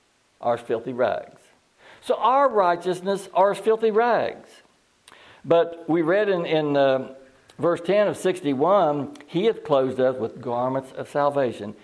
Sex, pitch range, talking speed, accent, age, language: male, 135-185 Hz, 140 wpm, American, 60-79, English